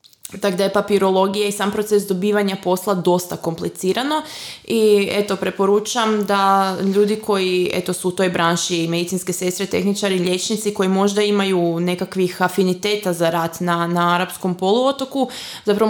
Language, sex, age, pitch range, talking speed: Croatian, female, 20-39, 185-210 Hz, 150 wpm